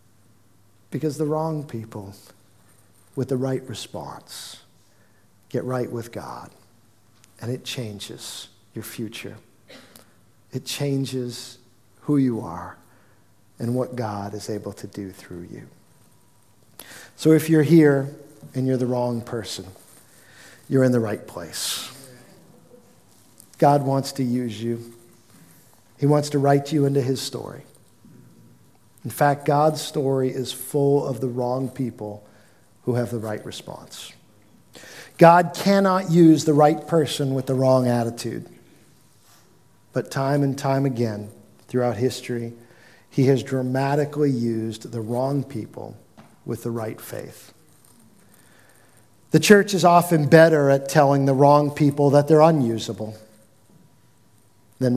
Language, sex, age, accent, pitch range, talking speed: English, male, 50-69, American, 110-140 Hz, 125 wpm